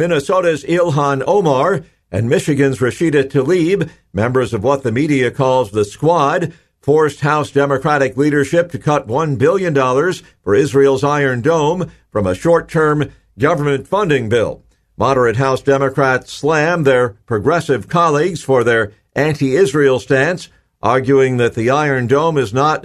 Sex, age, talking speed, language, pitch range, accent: male, 50-69, 135 wpm, English, 125-150 Hz, American